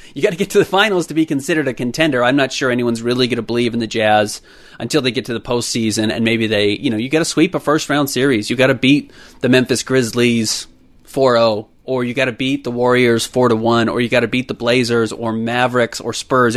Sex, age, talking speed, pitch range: male, 30-49, 245 wpm, 115-130 Hz